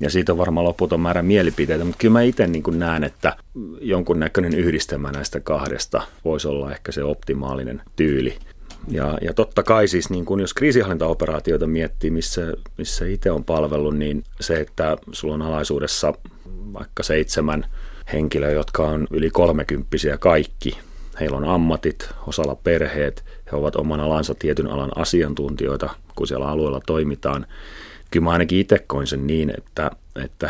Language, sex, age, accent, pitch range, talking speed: Finnish, male, 30-49, native, 70-85 Hz, 155 wpm